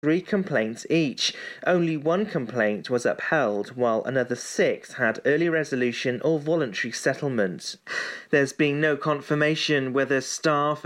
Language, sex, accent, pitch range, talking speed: English, male, British, 125-155 Hz, 125 wpm